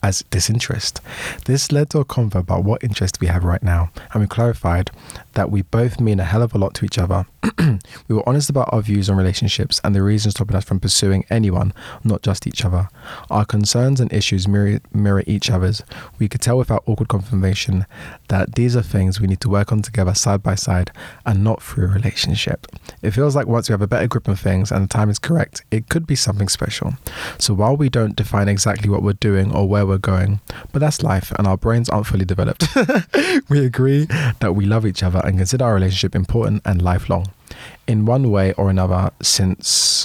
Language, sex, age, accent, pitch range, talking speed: English, male, 20-39, British, 95-115 Hz, 215 wpm